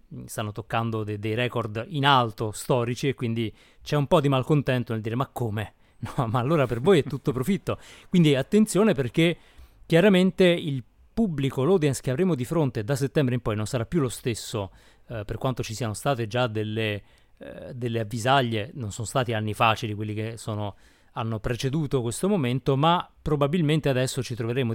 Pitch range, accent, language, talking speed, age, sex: 110-145 Hz, native, Italian, 170 wpm, 30-49, male